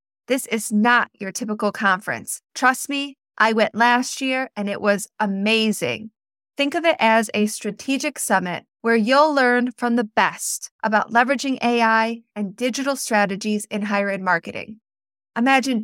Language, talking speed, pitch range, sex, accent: English, 150 wpm, 210-255 Hz, female, American